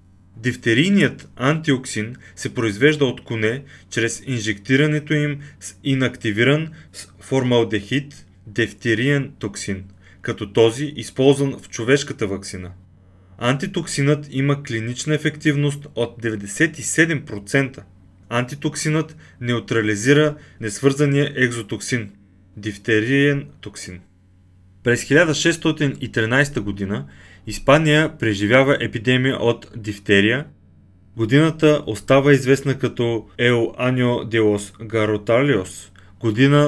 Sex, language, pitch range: male, Bulgarian, 100-140 Hz